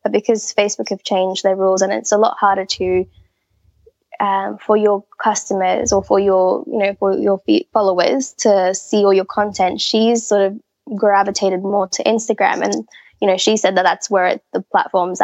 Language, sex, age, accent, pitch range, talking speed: English, female, 10-29, Australian, 190-220 Hz, 190 wpm